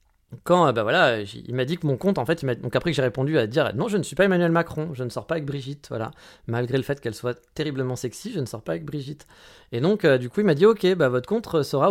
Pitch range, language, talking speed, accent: 125-170 Hz, French, 315 wpm, French